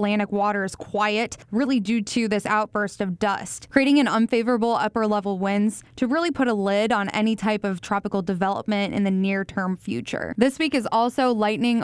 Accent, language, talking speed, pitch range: American, English, 200 wpm, 205-235 Hz